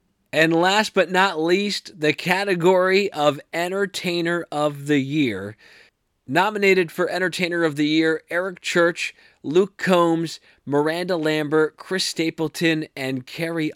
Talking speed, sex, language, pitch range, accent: 120 wpm, male, English, 150-185 Hz, American